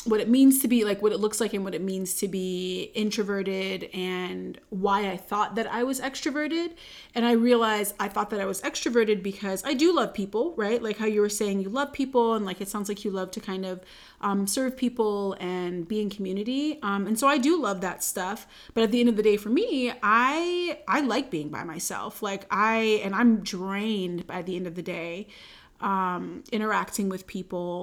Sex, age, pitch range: female, 30-49, 190-230 Hz